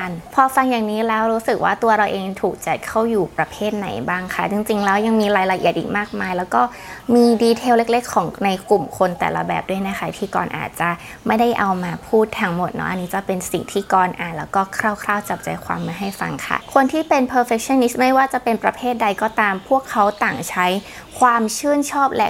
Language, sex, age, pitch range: Thai, female, 20-39, 195-235 Hz